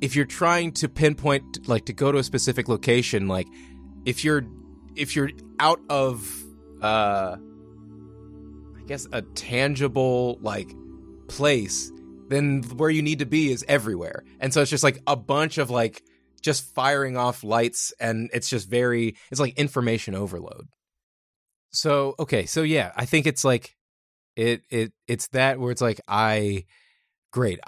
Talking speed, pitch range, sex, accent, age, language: 155 wpm, 105-140 Hz, male, American, 20-39, English